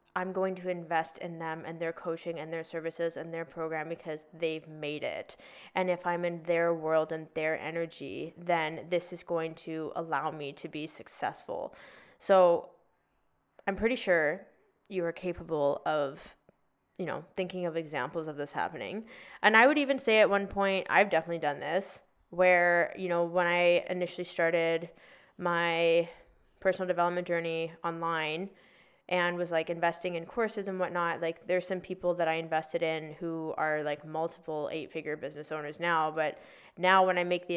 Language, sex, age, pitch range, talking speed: English, female, 20-39, 160-180 Hz, 170 wpm